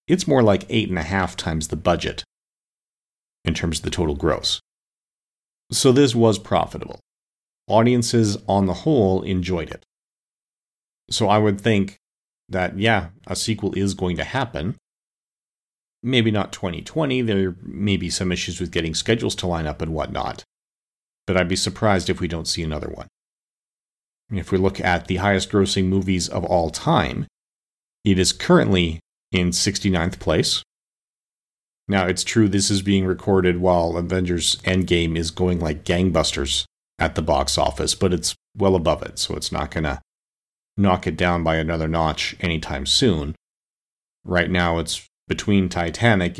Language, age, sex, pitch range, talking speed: English, 40-59, male, 85-100 Hz, 155 wpm